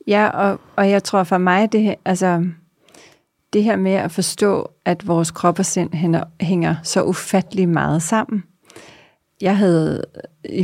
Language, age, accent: Danish, 30-49, native